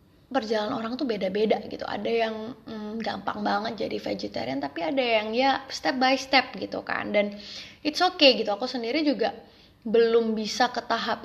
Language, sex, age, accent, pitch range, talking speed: Indonesian, female, 20-39, native, 215-265 Hz, 170 wpm